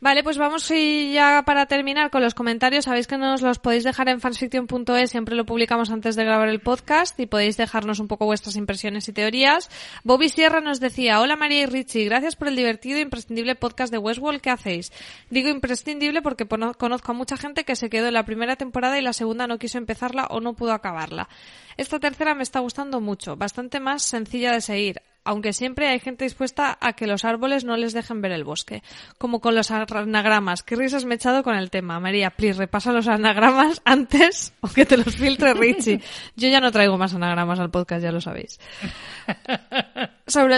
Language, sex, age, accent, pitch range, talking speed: Spanish, female, 20-39, Spanish, 220-270 Hz, 210 wpm